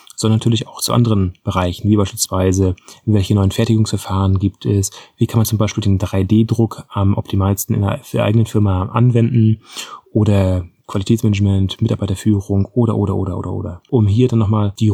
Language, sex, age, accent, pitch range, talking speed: German, male, 30-49, German, 100-115 Hz, 160 wpm